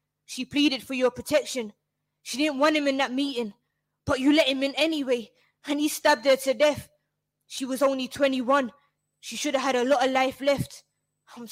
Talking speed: 200 wpm